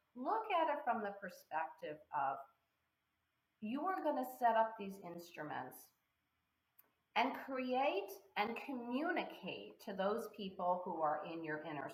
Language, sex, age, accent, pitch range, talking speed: English, female, 40-59, American, 175-250 Hz, 135 wpm